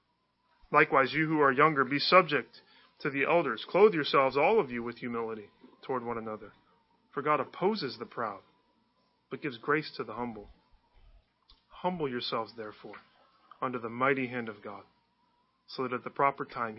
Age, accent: 30-49, American